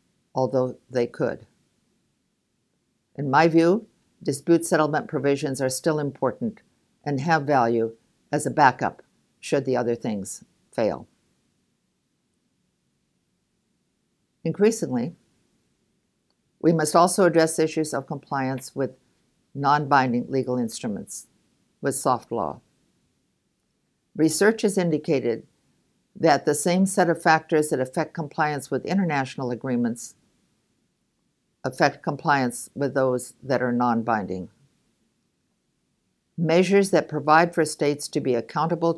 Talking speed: 105 wpm